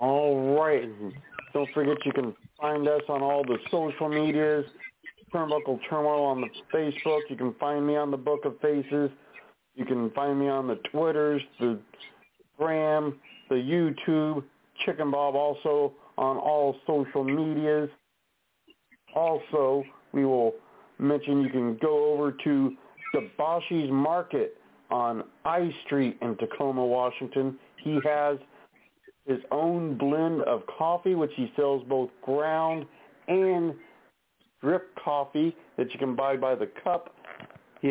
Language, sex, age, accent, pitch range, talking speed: English, male, 50-69, American, 135-160 Hz, 135 wpm